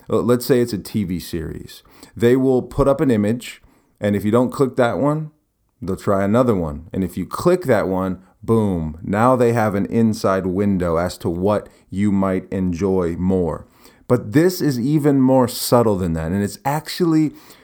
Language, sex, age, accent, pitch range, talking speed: English, male, 30-49, American, 95-120 Hz, 185 wpm